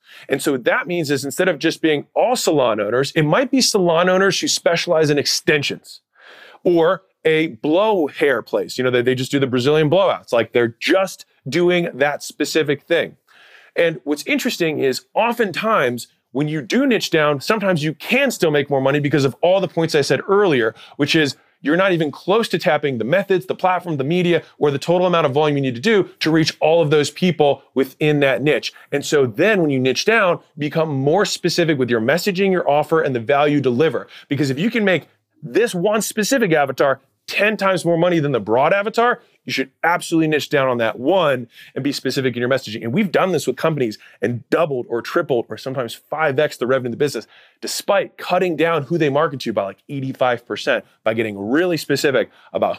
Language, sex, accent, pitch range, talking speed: English, male, American, 135-180 Hz, 210 wpm